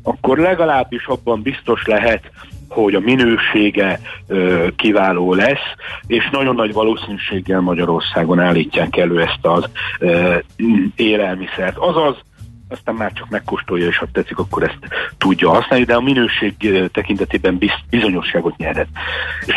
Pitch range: 95-110 Hz